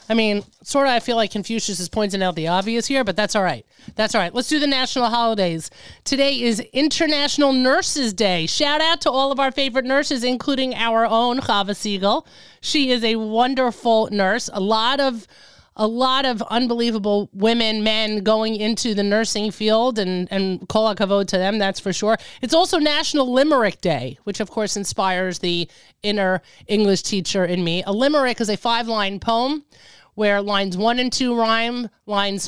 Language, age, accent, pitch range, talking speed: English, 30-49, American, 195-245 Hz, 185 wpm